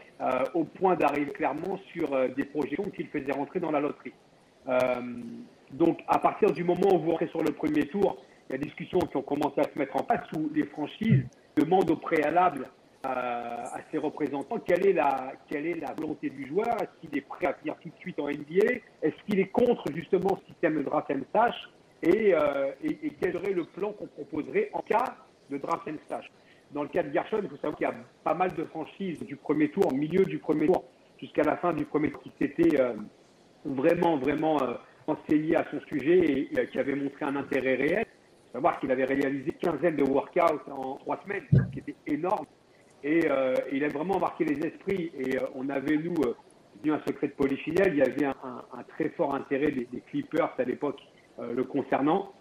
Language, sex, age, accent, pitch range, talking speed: French, male, 50-69, French, 140-195 Hz, 225 wpm